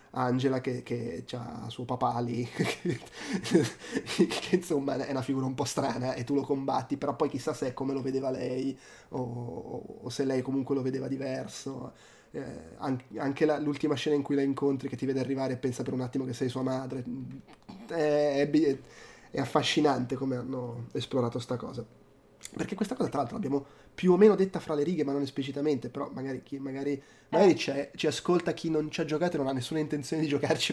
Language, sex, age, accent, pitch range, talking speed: Italian, male, 20-39, native, 135-155 Hz, 195 wpm